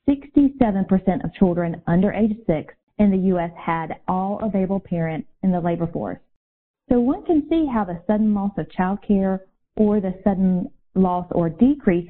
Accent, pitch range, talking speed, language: American, 170-215 Hz, 170 wpm, English